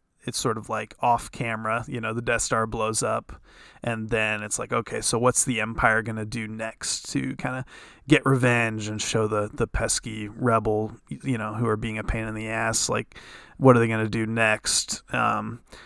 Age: 20-39